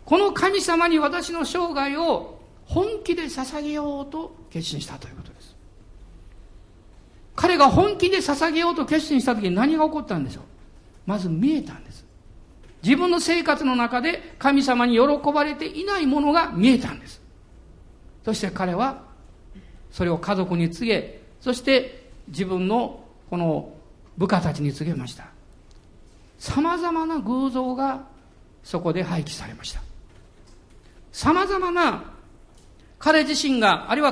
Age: 50-69